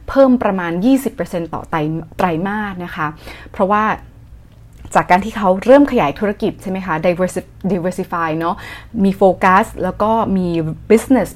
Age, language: 20-39, Thai